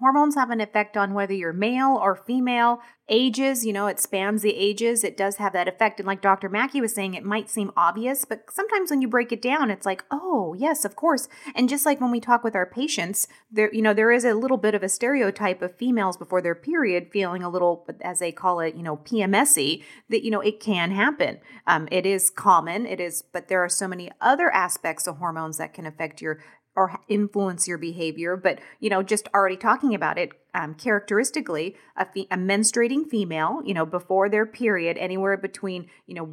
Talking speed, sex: 220 wpm, female